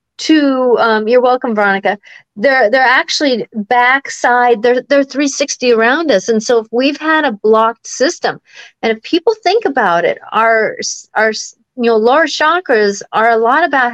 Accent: American